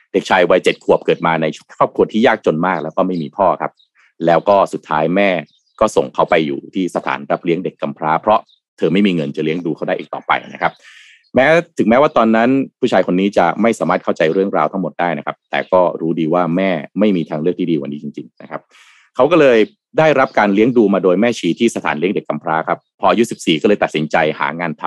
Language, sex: Thai, male